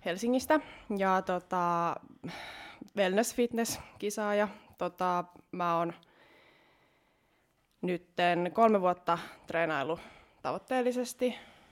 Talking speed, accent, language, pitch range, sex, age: 65 wpm, native, Finnish, 170-205 Hz, female, 20-39